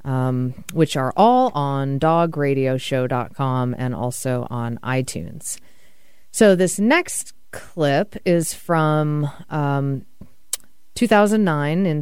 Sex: female